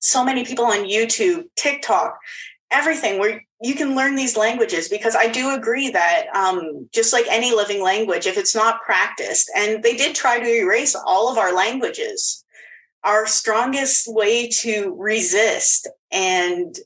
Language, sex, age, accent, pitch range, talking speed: English, female, 20-39, American, 190-290 Hz, 155 wpm